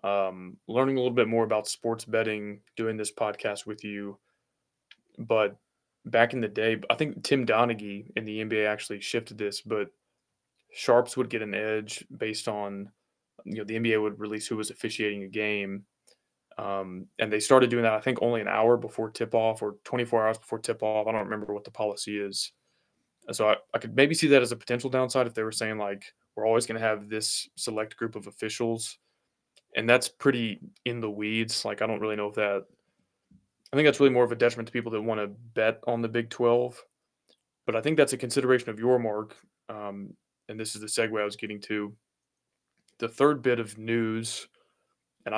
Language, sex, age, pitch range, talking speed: English, male, 20-39, 105-120 Hz, 205 wpm